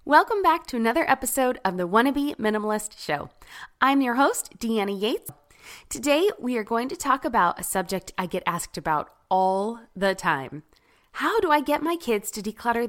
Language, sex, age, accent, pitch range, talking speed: English, female, 20-39, American, 185-275 Hz, 180 wpm